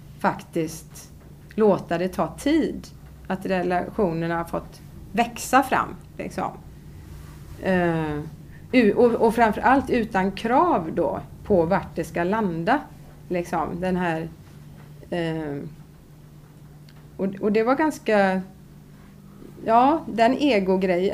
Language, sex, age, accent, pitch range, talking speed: Swedish, female, 30-49, native, 175-225 Hz, 85 wpm